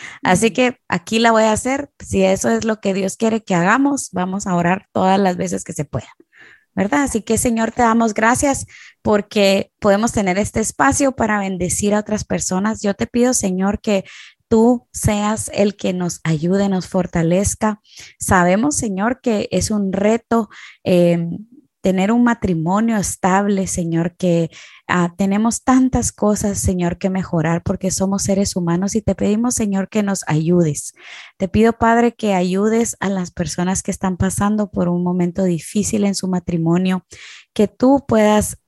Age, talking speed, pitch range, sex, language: 20-39, 165 wpm, 185-220 Hz, female, Spanish